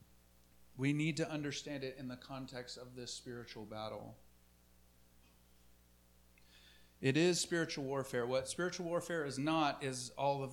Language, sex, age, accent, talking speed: English, male, 40-59, American, 135 wpm